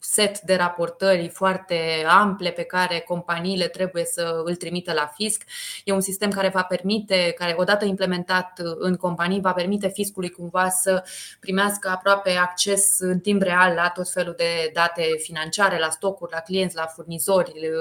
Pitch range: 170-200 Hz